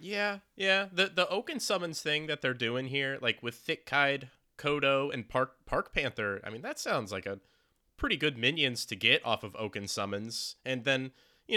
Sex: male